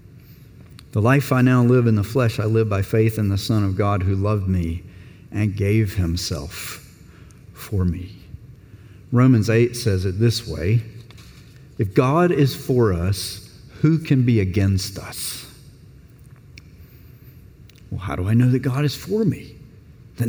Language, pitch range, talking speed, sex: English, 105-145 Hz, 155 wpm, male